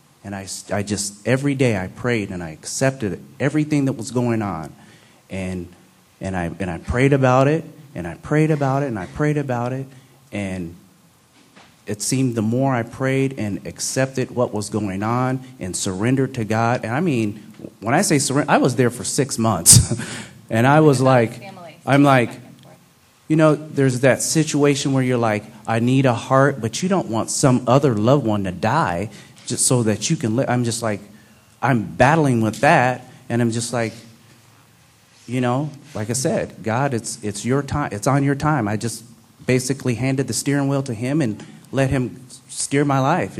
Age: 30-49